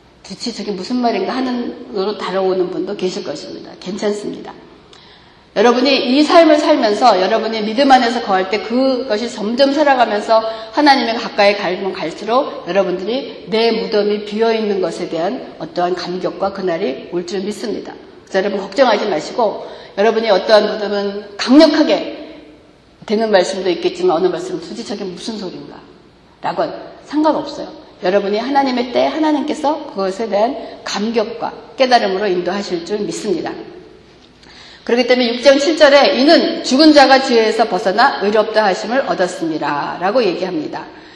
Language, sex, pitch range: Korean, female, 200-290 Hz